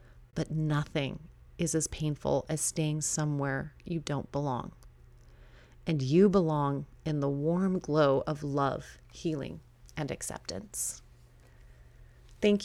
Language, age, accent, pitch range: English, 30-49, American, 145-185 Hz